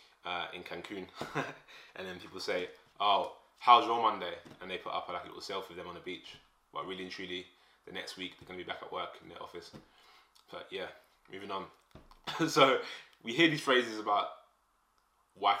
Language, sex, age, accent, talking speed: English, male, 20-39, British, 190 wpm